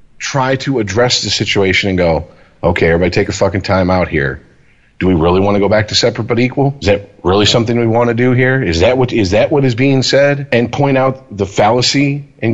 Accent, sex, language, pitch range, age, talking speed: American, male, English, 95-120 Hz, 40-59, 240 wpm